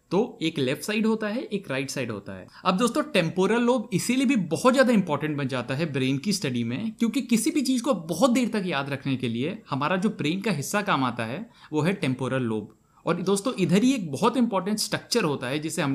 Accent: native